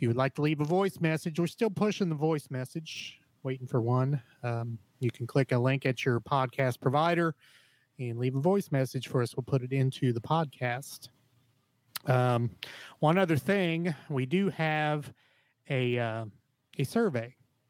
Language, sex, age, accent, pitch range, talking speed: English, male, 30-49, American, 120-145 Hz, 175 wpm